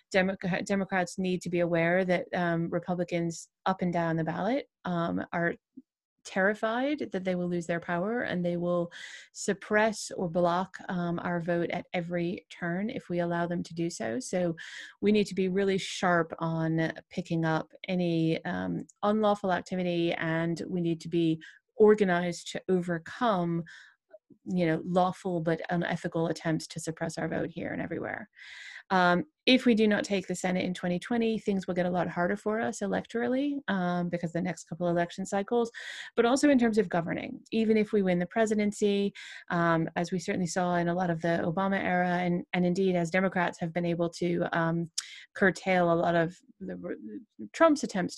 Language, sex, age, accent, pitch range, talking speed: English, female, 30-49, American, 170-195 Hz, 180 wpm